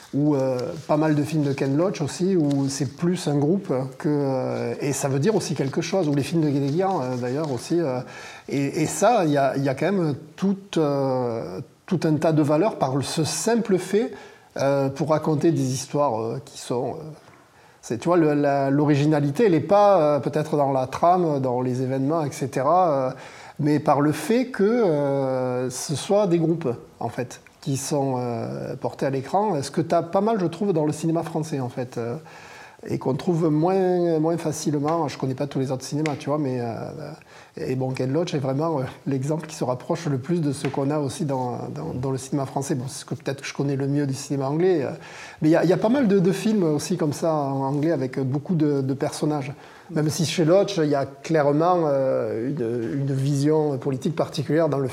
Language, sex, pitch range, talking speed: English, male, 135-165 Hz, 225 wpm